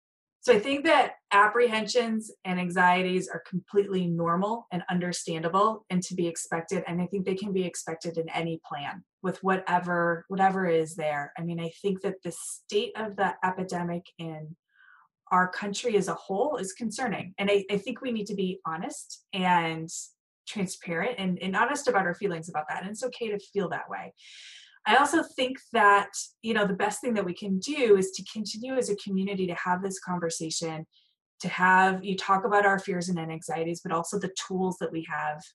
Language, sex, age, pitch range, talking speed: English, female, 20-39, 170-200 Hz, 190 wpm